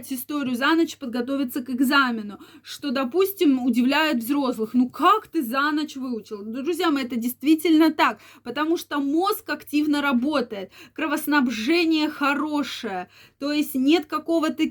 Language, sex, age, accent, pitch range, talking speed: Russian, female, 20-39, native, 235-295 Hz, 130 wpm